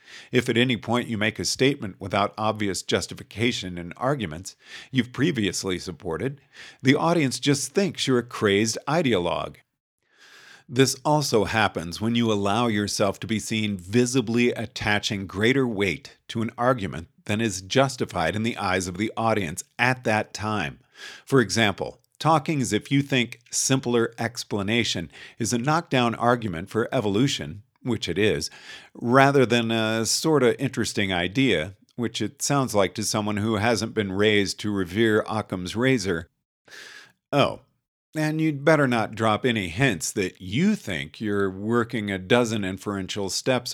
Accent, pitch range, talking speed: American, 100-125 Hz, 150 wpm